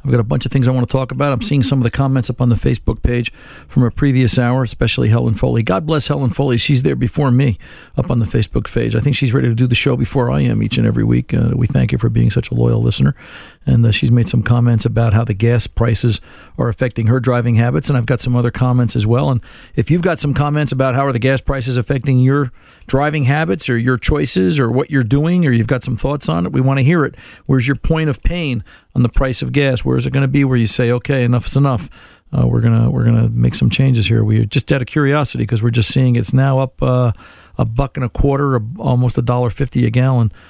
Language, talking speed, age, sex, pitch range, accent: English, 270 wpm, 50-69, male, 115-135 Hz, American